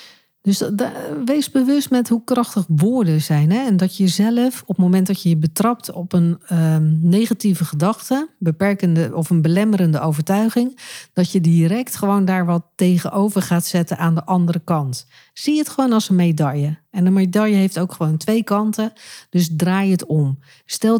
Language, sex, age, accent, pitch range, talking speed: Dutch, female, 50-69, Dutch, 170-215 Hz, 170 wpm